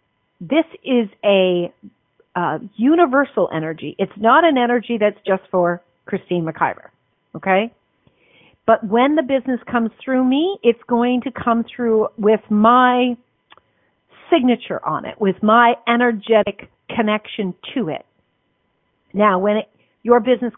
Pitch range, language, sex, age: 200-260 Hz, English, female, 50-69